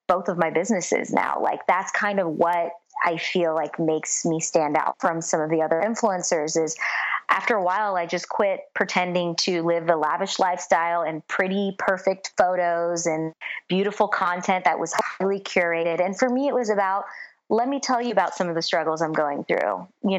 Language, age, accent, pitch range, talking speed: English, 30-49, American, 170-210 Hz, 195 wpm